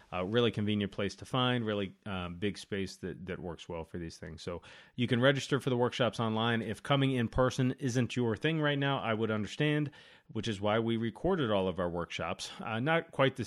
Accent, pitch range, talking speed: American, 95-125 Hz, 220 wpm